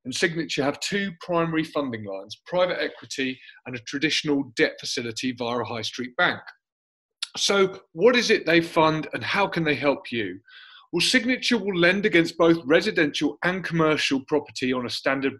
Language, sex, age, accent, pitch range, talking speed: English, male, 30-49, British, 130-180 Hz, 170 wpm